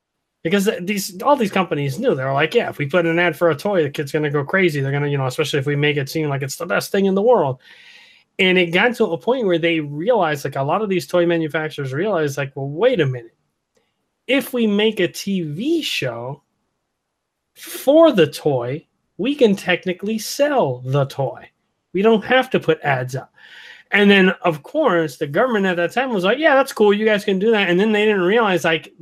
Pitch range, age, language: 150-205 Hz, 30-49, English